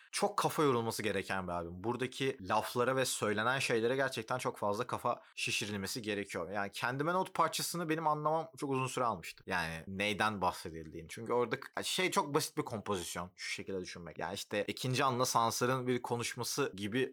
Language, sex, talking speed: Turkish, male, 170 wpm